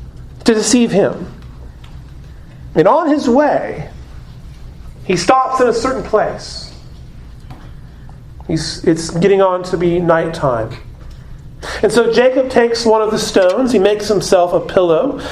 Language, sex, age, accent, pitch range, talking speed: English, male, 40-59, American, 165-215 Hz, 130 wpm